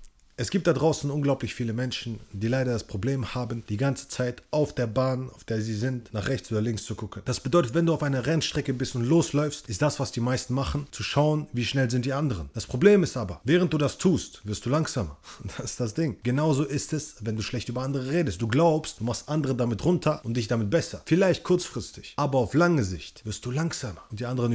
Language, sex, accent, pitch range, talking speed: German, male, German, 120-155 Hz, 240 wpm